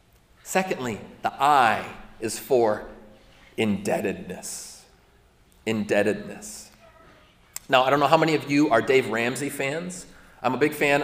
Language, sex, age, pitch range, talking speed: English, male, 30-49, 130-190 Hz, 125 wpm